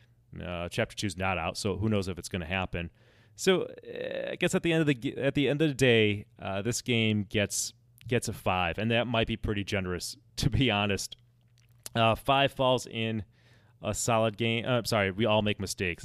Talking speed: 225 wpm